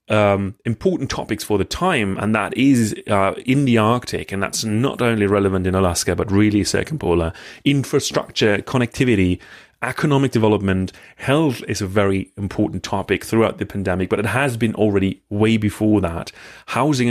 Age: 30-49